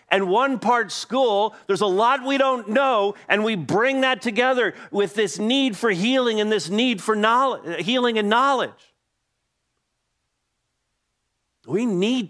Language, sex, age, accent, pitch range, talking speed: English, male, 50-69, American, 135-210 Hz, 145 wpm